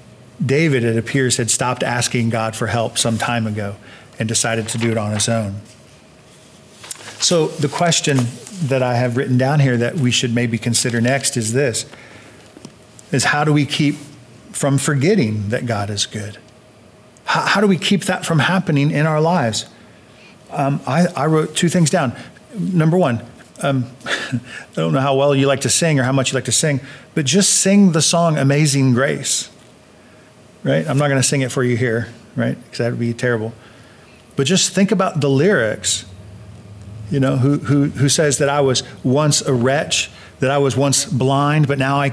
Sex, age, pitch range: male, 40-59, 120-155 Hz